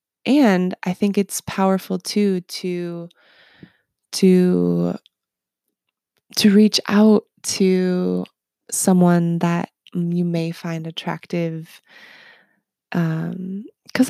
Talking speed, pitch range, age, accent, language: 80 wpm, 170-210 Hz, 20-39, American, English